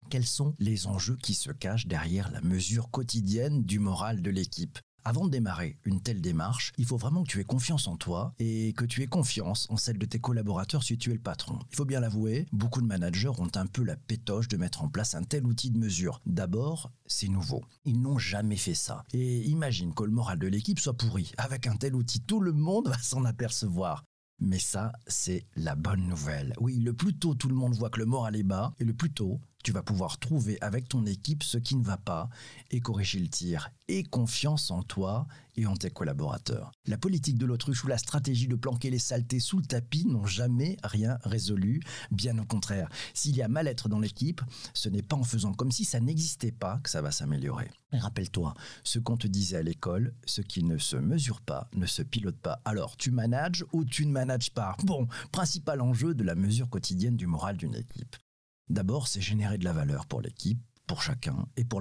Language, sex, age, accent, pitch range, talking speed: French, male, 50-69, French, 105-130 Hz, 225 wpm